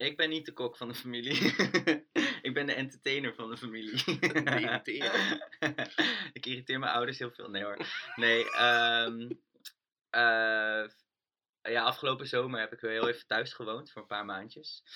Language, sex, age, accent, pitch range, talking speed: Dutch, male, 20-39, Dutch, 110-125 Hz, 170 wpm